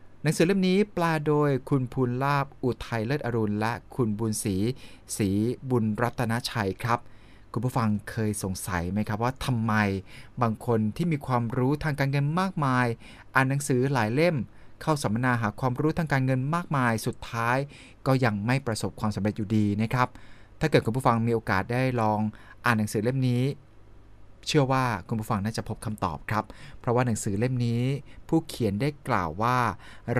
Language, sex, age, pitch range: Thai, male, 20-39, 110-135 Hz